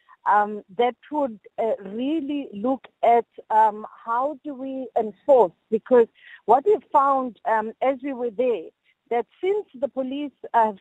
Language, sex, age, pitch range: English, female, 50-69, 220-275 Hz